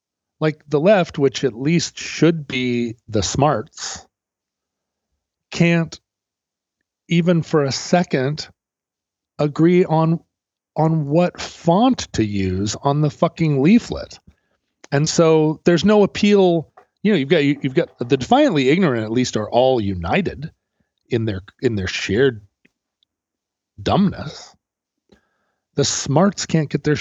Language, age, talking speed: English, 40-59, 125 wpm